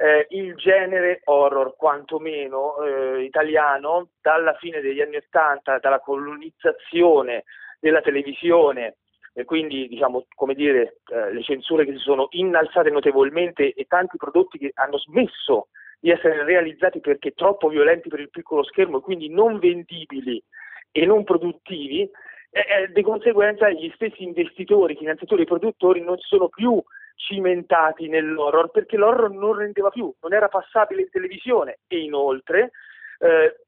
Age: 40-59